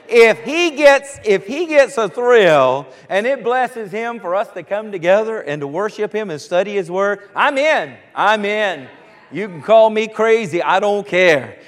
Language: English